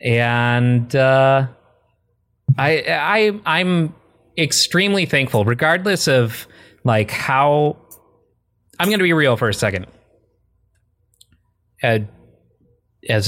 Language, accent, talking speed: English, American, 90 wpm